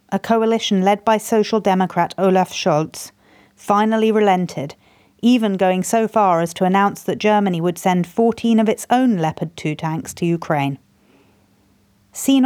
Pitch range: 170-225 Hz